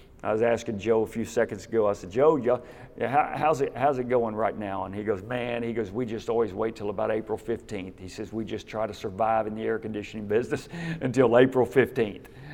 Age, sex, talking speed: 50-69, male, 235 wpm